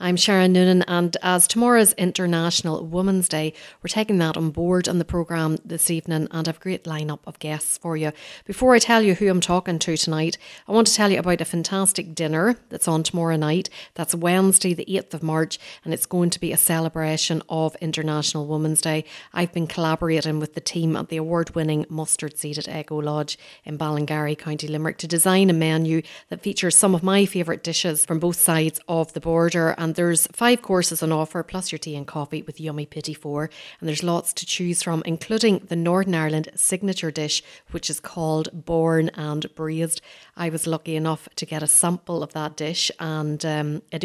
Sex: female